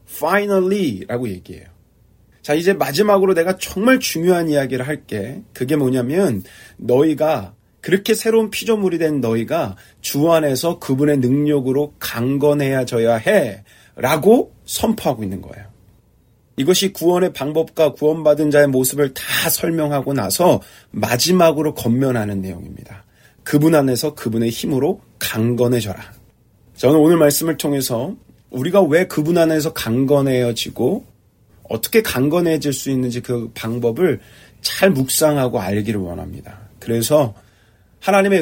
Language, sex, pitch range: Korean, male, 115-160 Hz